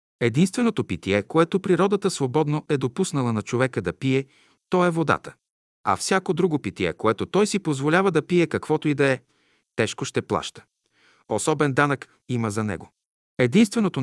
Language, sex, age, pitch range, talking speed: Bulgarian, male, 50-69, 130-175 Hz, 160 wpm